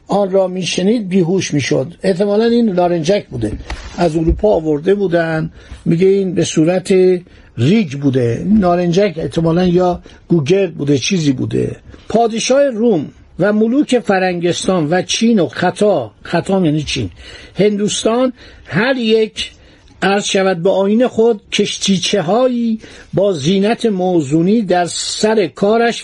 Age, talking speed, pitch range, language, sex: 50-69, 120 wpm, 170-220 Hz, Persian, male